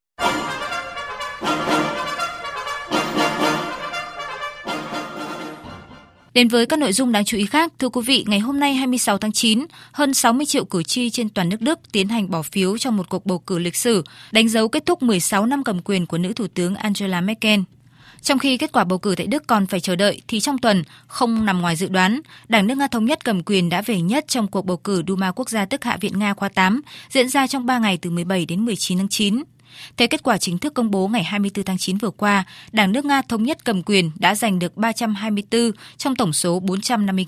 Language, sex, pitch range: Vietnamese, female, 185-240 Hz